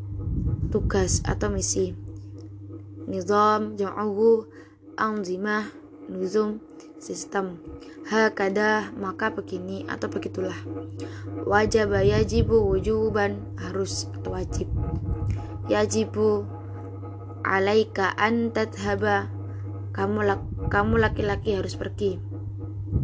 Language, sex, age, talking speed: Indonesian, female, 20-39, 70 wpm